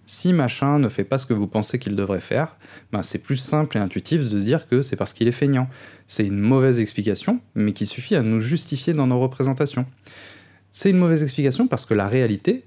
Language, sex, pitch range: French, male, 110-150 Hz